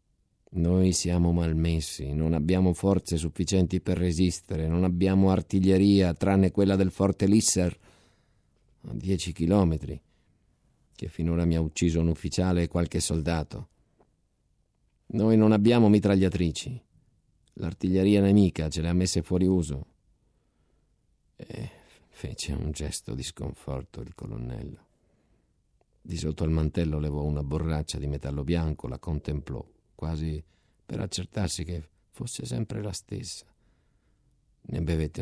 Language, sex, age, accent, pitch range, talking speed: Italian, male, 50-69, native, 80-95 Hz, 120 wpm